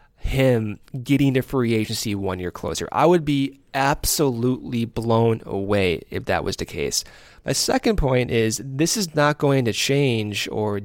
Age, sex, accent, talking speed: 20-39, male, American, 165 wpm